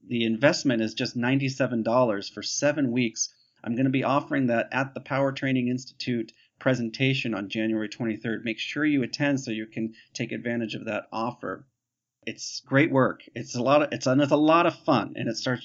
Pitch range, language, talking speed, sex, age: 115-135 Hz, English, 180 wpm, male, 40-59